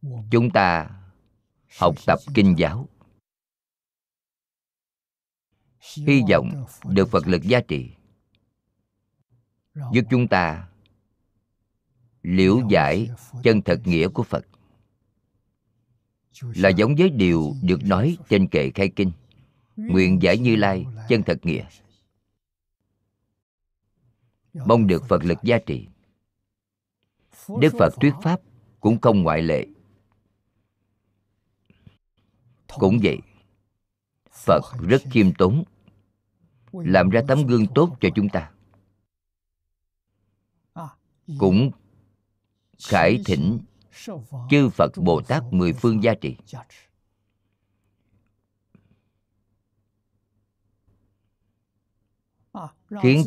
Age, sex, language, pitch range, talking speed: 50-69, male, Vietnamese, 100-115 Hz, 90 wpm